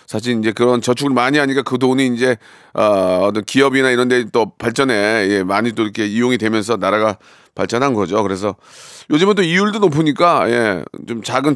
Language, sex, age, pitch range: Korean, male, 40-59, 115-160 Hz